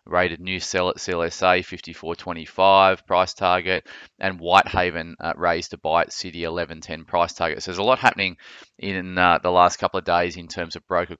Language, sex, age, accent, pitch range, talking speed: English, male, 20-39, Australian, 85-90 Hz, 190 wpm